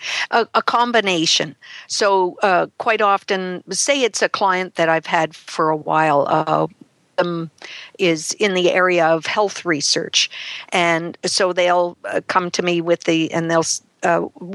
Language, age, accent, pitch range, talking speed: English, 50-69, American, 165-185 Hz, 155 wpm